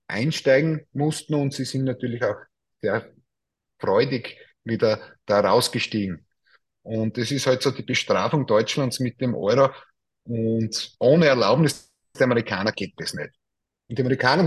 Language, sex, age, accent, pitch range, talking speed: German, male, 30-49, Austrian, 115-140 Hz, 140 wpm